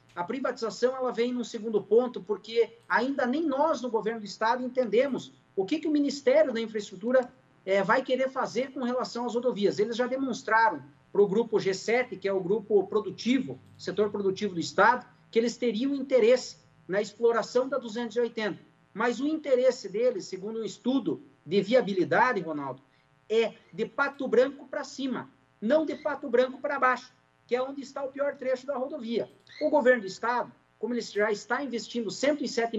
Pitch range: 205-255 Hz